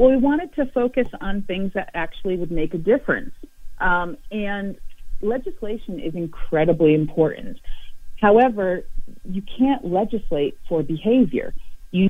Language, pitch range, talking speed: English, 165-215 Hz, 130 wpm